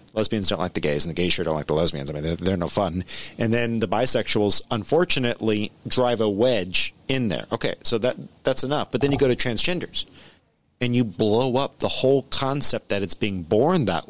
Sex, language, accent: male, English, American